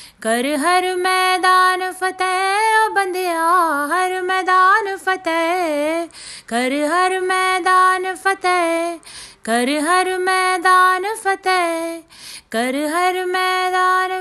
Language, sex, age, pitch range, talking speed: Hindi, female, 30-49, 260-370 Hz, 80 wpm